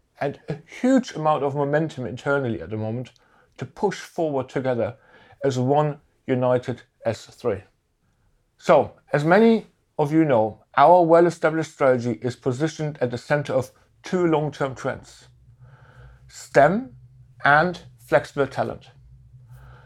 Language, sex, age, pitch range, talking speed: English, male, 60-79, 125-155 Hz, 120 wpm